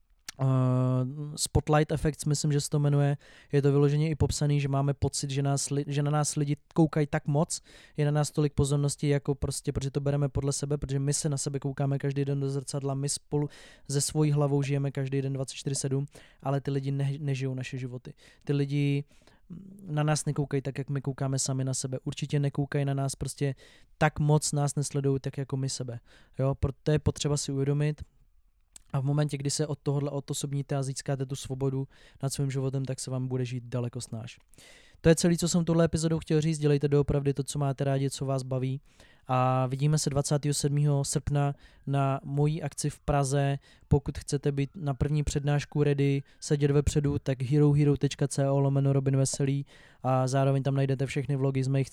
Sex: male